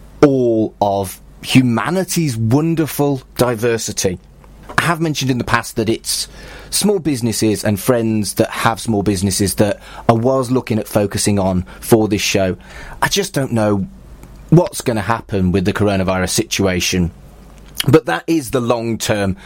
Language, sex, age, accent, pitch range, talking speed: English, male, 30-49, British, 100-135 Hz, 150 wpm